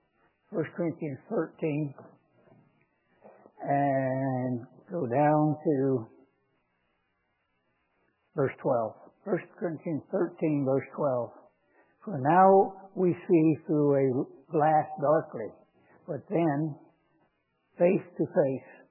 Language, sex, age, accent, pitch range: English, male, 60-79, American, 140-170 Hz